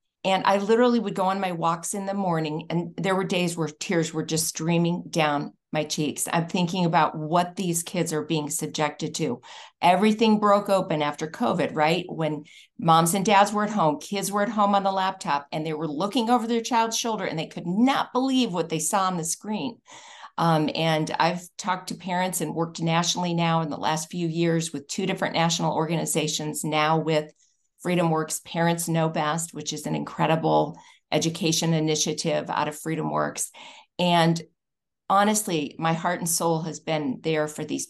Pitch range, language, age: 155-200 Hz, English, 50-69